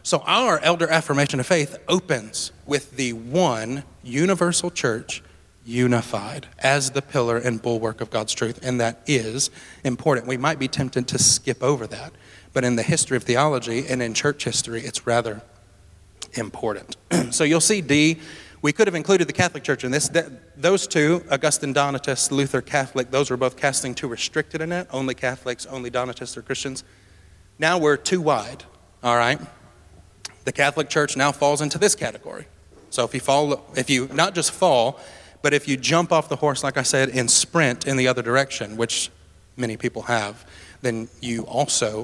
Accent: American